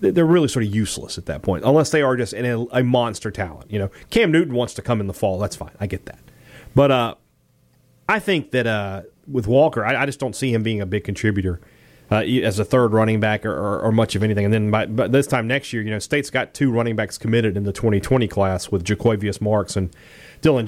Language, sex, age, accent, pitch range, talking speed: English, male, 30-49, American, 105-135 Hz, 250 wpm